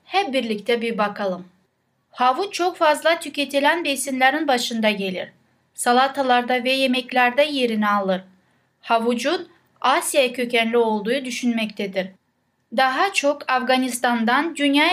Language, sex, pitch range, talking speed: Turkish, female, 230-295 Hz, 100 wpm